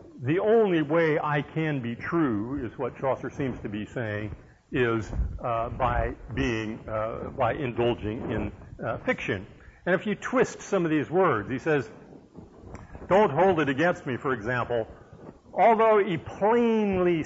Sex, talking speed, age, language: male, 155 wpm, 50-69, English